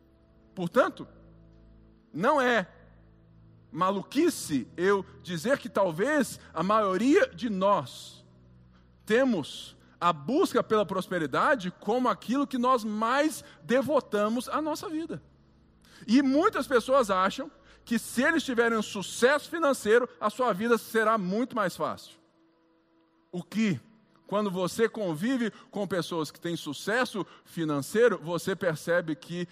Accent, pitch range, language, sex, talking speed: Brazilian, 165-240 Hz, Portuguese, male, 115 wpm